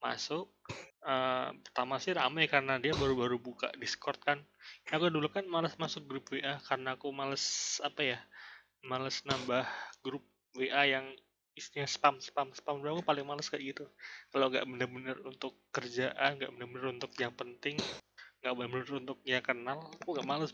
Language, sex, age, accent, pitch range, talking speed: Indonesian, male, 20-39, native, 125-145 Hz, 165 wpm